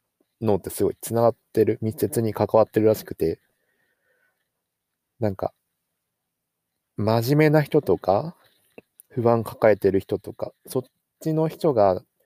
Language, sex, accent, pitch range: Japanese, male, native, 95-130 Hz